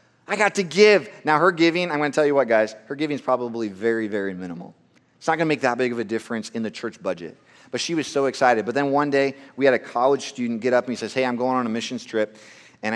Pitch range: 110-175 Hz